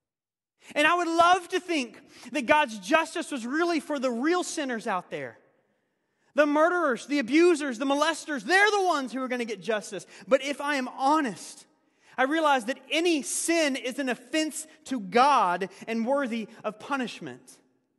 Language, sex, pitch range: English, male, 185-280 Hz